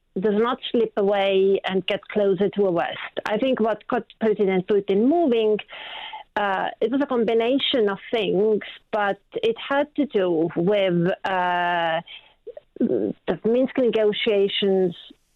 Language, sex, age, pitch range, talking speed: English, female, 40-59, 190-235 Hz, 135 wpm